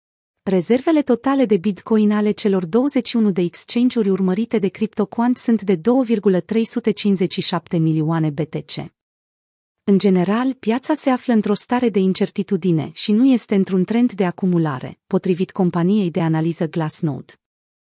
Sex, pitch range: female, 185-225 Hz